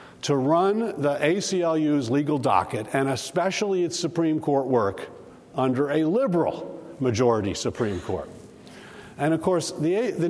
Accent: American